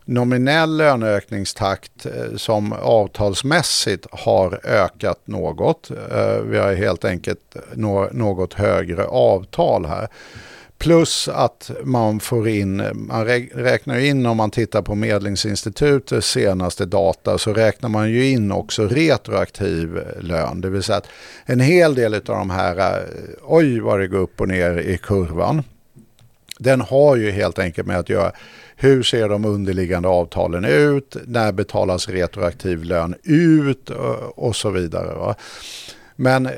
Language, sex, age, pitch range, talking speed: Swedish, male, 50-69, 95-125 Hz, 135 wpm